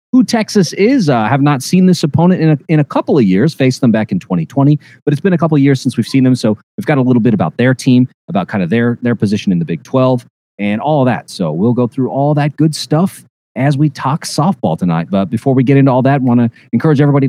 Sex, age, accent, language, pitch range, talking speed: male, 30-49, American, English, 115-155 Hz, 275 wpm